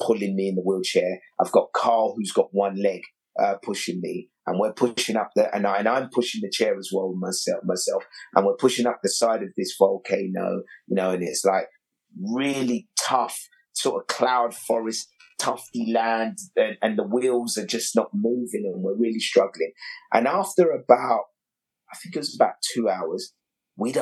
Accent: British